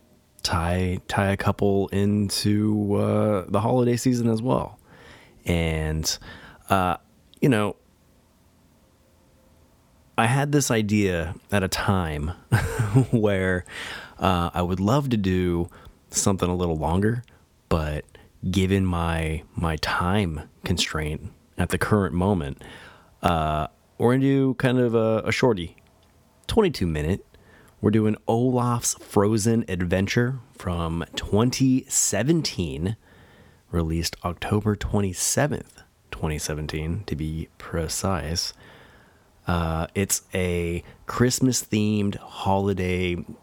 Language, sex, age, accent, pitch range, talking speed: English, male, 30-49, American, 85-105 Hz, 100 wpm